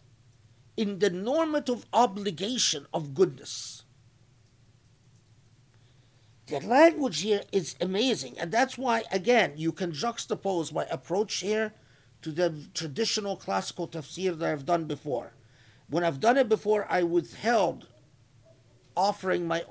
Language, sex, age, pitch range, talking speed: English, male, 50-69, 125-205 Hz, 120 wpm